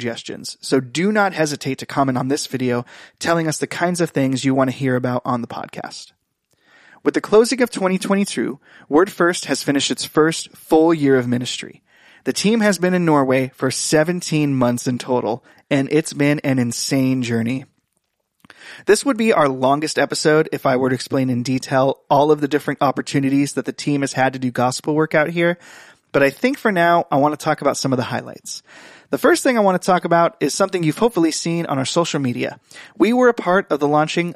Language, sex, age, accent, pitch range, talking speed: English, male, 20-39, American, 135-175 Hz, 215 wpm